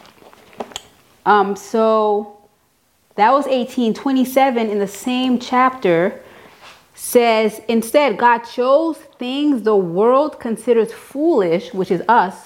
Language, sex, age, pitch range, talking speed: English, female, 30-49, 185-250 Hz, 100 wpm